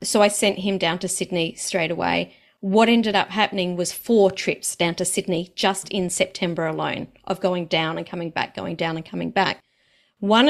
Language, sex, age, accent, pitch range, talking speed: English, female, 40-59, Australian, 190-240 Hz, 200 wpm